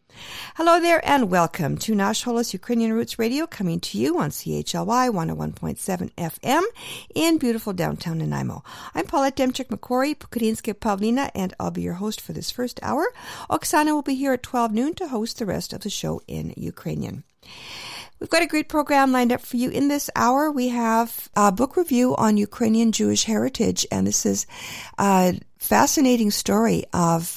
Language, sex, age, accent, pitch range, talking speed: English, female, 50-69, American, 165-245 Hz, 170 wpm